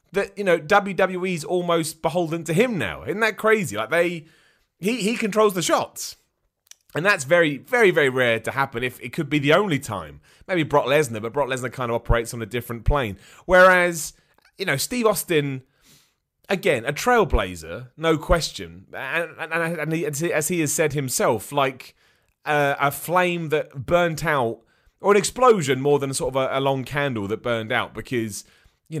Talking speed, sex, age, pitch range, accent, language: 185 wpm, male, 30-49, 120-165 Hz, British, English